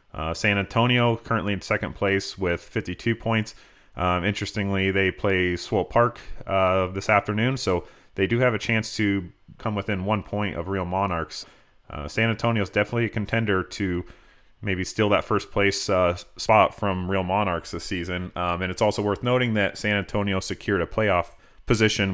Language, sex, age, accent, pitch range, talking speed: English, male, 30-49, American, 95-110 Hz, 180 wpm